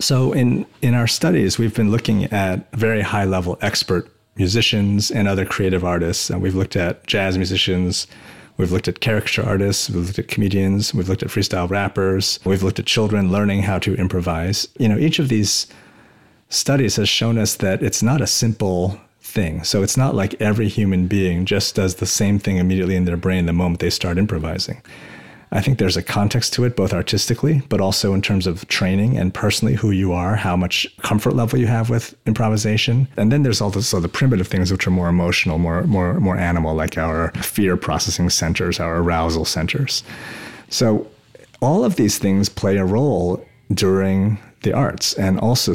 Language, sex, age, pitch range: English, male, 30-49, 90-110 Hz